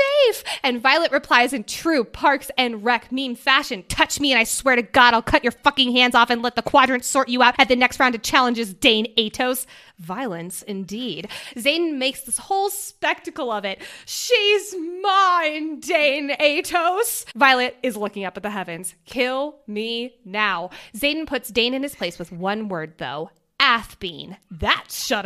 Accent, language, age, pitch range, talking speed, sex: American, English, 20-39, 220-320 Hz, 175 wpm, female